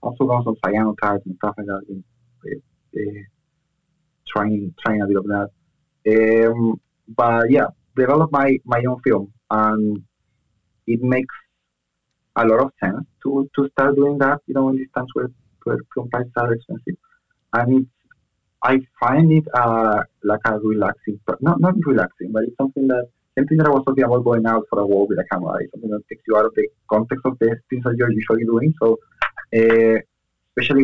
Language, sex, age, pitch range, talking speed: English, male, 30-49, 105-130 Hz, 190 wpm